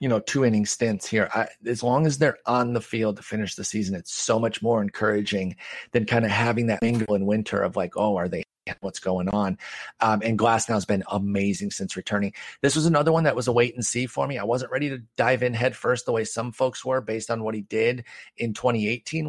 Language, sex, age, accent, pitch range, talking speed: English, male, 40-59, American, 110-135 Hz, 250 wpm